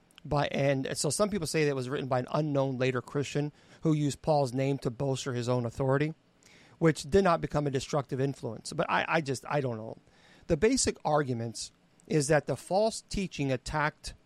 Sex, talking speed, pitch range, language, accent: male, 200 wpm, 135-165 Hz, English, American